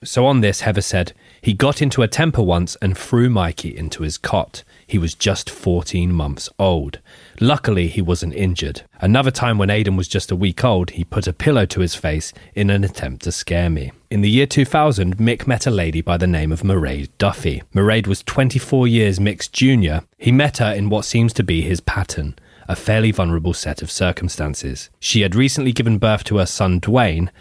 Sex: male